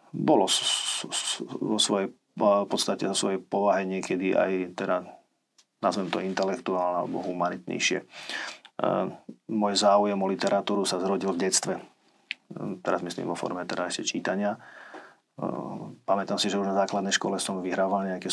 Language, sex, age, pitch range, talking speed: Slovak, male, 40-59, 95-110 Hz, 130 wpm